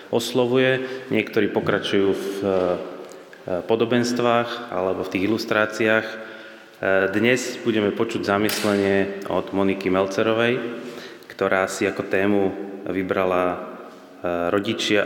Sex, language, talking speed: male, Slovak, 90 wpm